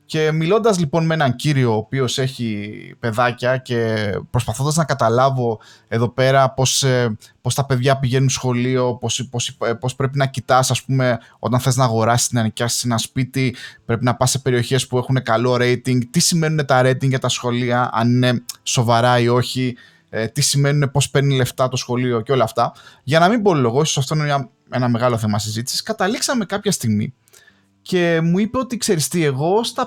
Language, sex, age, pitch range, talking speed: Greek, male, 20-39, 125-195 Hz, 175 wpm